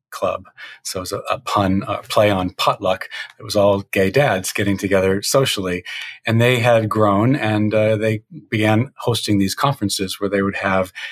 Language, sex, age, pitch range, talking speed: English, male, 40-59, 100-120 Hz, 185 wpm